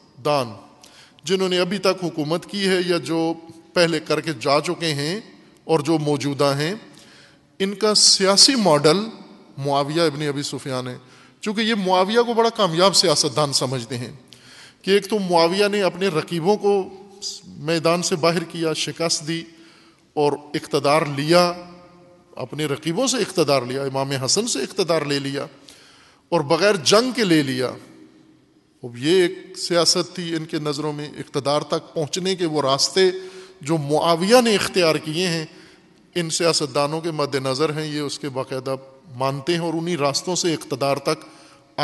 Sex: male